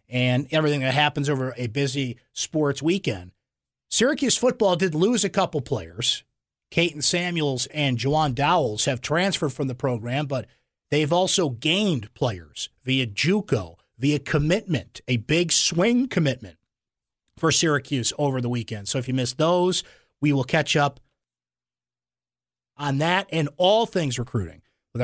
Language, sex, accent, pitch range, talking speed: English, male, American, 125-160 Hz, 145 wpm